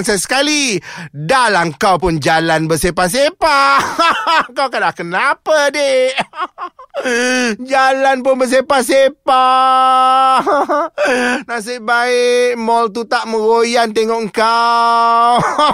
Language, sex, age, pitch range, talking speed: Malay, male, 30-49, 185-270 Hz, 80 wpm